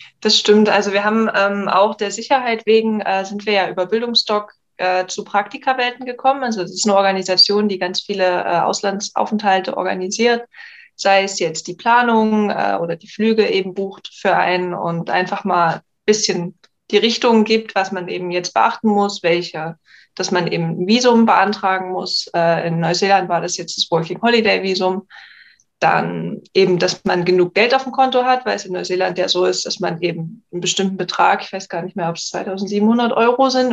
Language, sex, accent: German, female, German